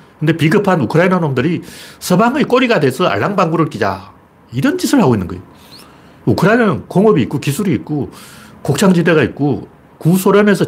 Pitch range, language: 130-205 Hz, Korean